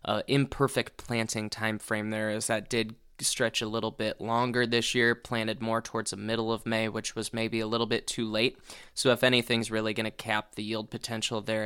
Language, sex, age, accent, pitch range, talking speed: English, male, 10-29, American, 110-130 Hz, 215 wpm